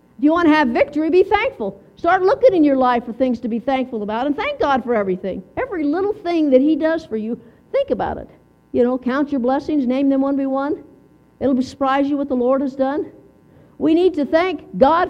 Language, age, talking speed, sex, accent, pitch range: English, 50-69, 230 wpm, female, American, 270-365 Hz